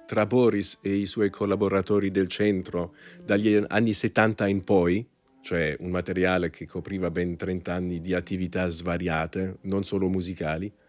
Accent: native